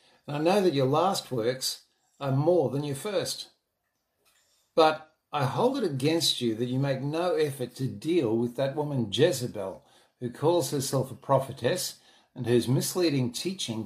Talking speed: 165 wpm